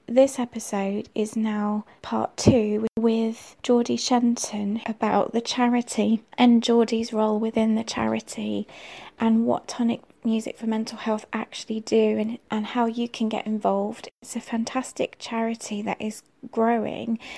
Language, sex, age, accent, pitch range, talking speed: English, female, 20-39, British, 220-235 Hz, 140 wpm